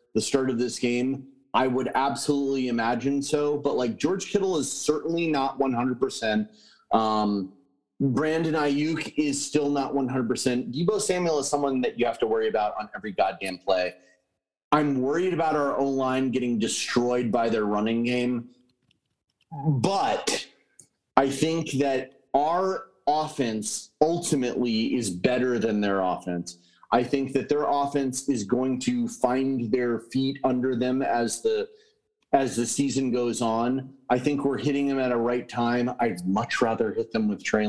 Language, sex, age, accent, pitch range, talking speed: English, male, 30-49, American, 120-145 Hz, 155 wpm